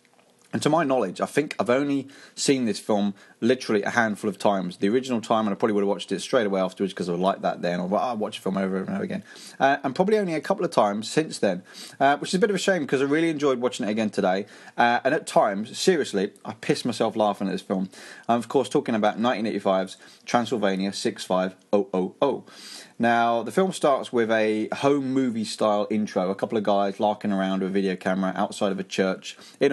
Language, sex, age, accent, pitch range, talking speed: English, male, 30-49, British, 100-120 Hz, 230 wpm